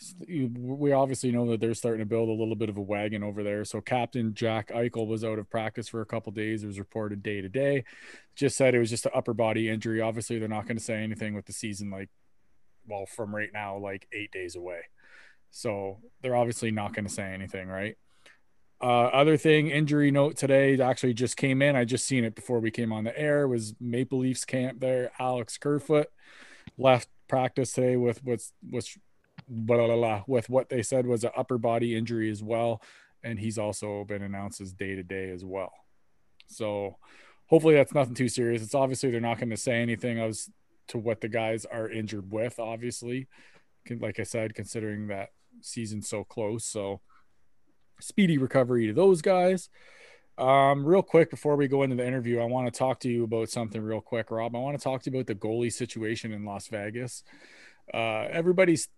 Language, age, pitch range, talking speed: English, 20-39, 110-130 Hz, 205 wpm